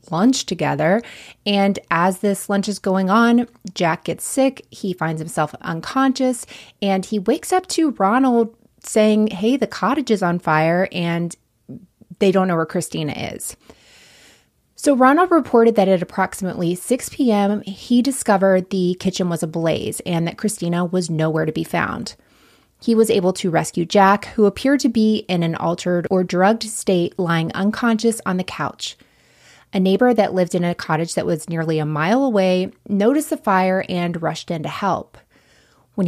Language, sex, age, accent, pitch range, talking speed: English, female, 20-39, American, 175-230 Hz, 170 wpm